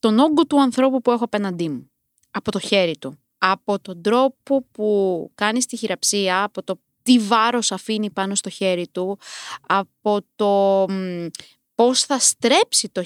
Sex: female